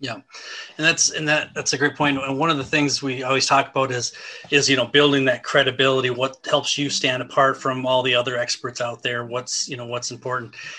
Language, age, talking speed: English, 30-49, 235 wpm